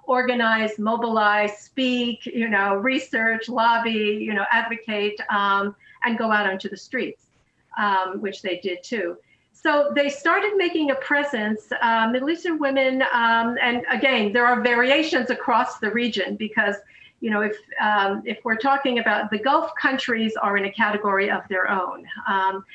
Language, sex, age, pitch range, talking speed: English, female, 50-69, 205-255 Hz, 160 wpm